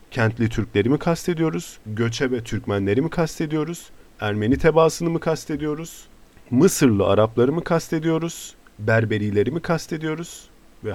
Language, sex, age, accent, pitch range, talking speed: Turkish, male, 40-59, native, 100-130 Hz, 115 wpm